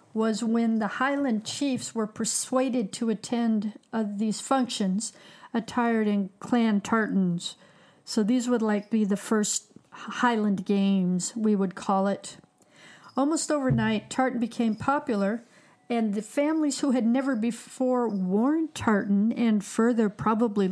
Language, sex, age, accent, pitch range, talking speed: English, female, 50-69, American, 210-255 Hz, 135 wpm